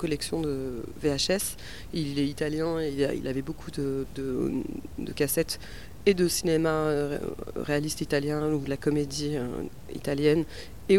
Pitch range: 150-175 Hz